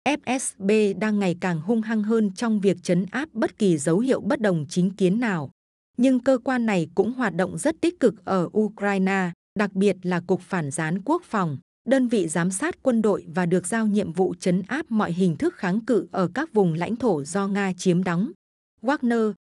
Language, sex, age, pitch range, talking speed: Vietnamese, female, 20-39, 185-230 Hz, 210 wpm